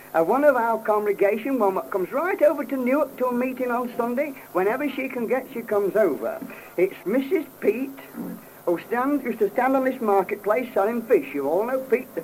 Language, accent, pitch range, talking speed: English, British, 190-280 Hz, 200 wpm